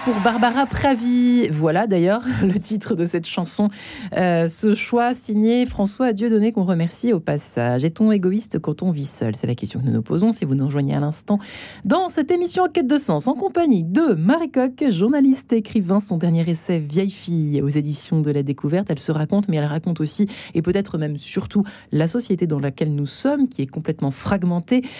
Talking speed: 205 wpm